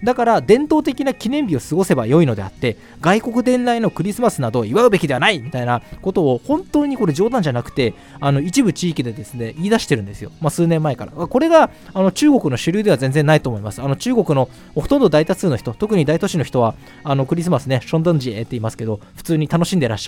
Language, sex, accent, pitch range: Japanese, male, native, 125-190 Hz